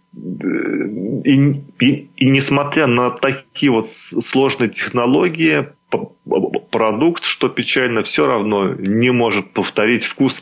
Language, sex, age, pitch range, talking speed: Russian, male, 20-39, 95-120 Hz, 100 wpm